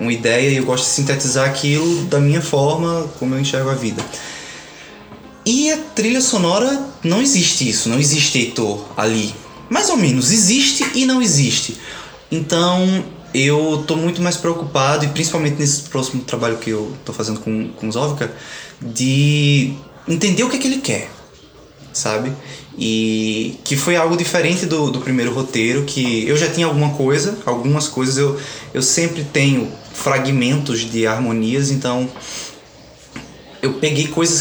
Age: 20-39